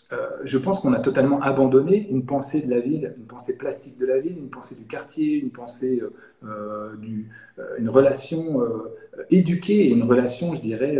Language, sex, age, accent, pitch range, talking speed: French, male, 40-59, French, 125-170 Hz, 195 wpm